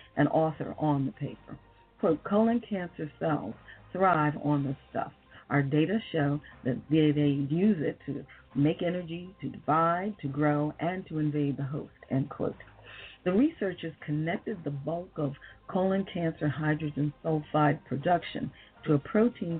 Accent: American